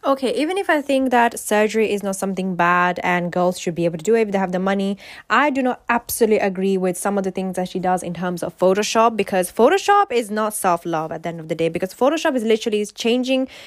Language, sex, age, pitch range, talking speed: English, female, 10-29, 180-225 Hz, 255 wpm